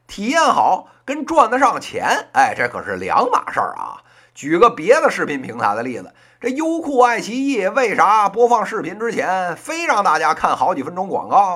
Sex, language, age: male, Chinese, 50-69